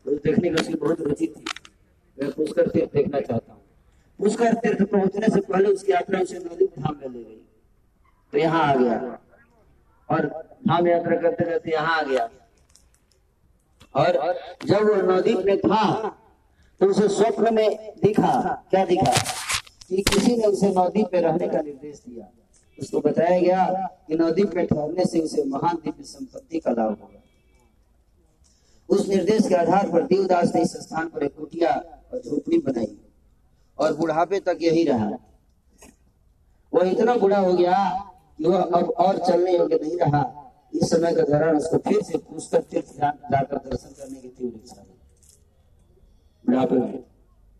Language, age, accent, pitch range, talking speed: Hindi, 40-59, native, 150-195 Hz, 115 wpm